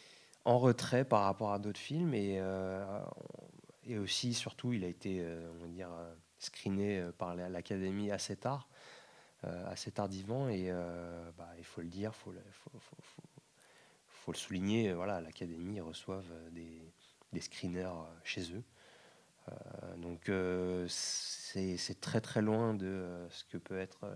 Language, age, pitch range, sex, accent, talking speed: French, 20-39, 90-105 Hz, male, French, 160 wpm